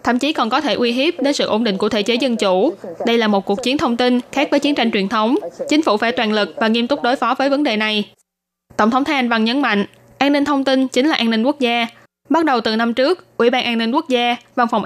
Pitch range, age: 215-260 Hz, 10-29